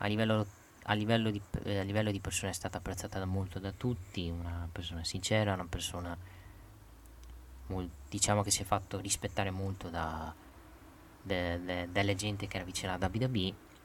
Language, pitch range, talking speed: Italian, 85-100 Hz, 145 wpm